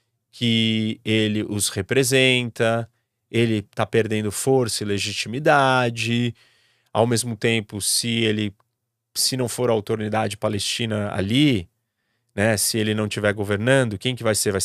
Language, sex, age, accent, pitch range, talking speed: Portuguese, male, 30-49, Brazilian, 105-130 Hz, 135 wpm